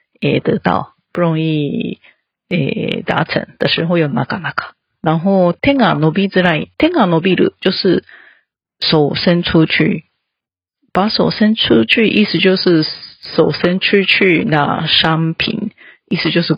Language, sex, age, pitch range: Japanese, female, 40-59, 160-210 Hz